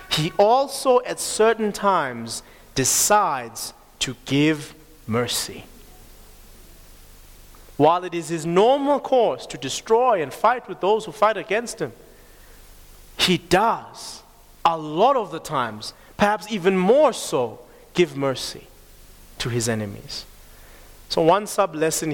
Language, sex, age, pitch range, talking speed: English, male, 30-49, 125-205 Hz, 120 wpm